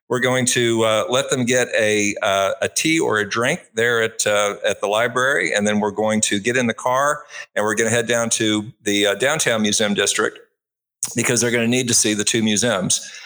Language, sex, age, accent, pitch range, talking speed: English, male, 50-69, American, 100-120 Hz, 230 wpm